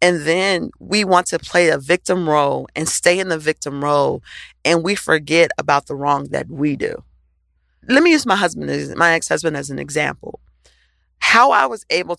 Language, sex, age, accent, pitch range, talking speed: English, female, 40-59, American, 145-195 Hz, 185 wpm